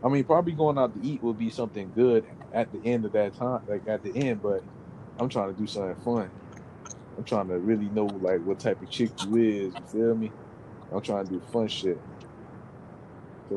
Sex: male